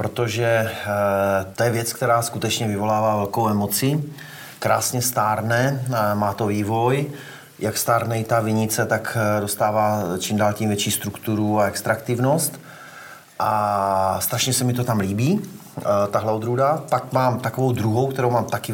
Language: Slovak